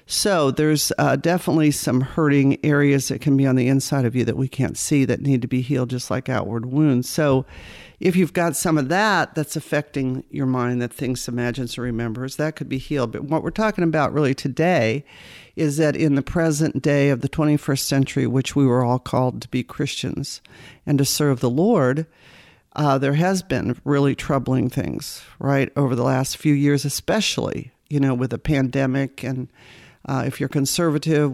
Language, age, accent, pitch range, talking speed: English, 50-69, American, 130-155 Hz, 195 wpm